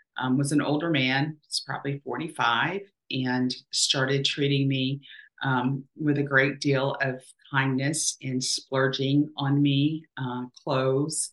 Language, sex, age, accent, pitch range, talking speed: English, female, 40-59, American, 125-140 Hz, 125 wpm